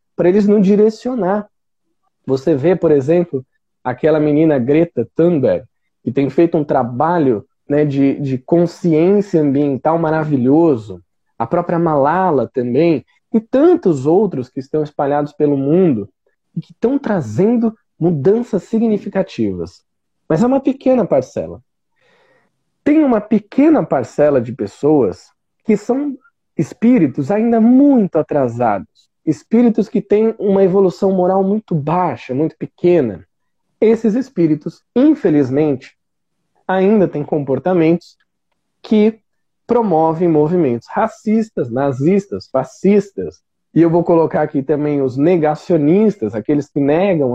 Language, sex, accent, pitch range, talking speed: Portuguese, male, Brazilian, 145-205 Hz, 115 wpm